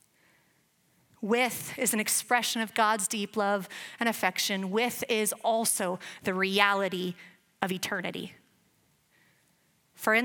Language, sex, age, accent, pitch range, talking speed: English, female, 30-49, American, 195-245 Hz, 110 wpm